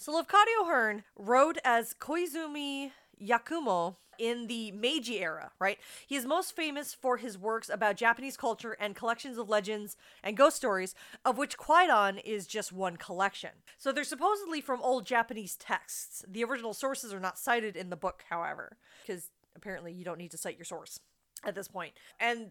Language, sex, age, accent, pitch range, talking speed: English, female, 20-39, American, 205-270 Hz, 175 wpm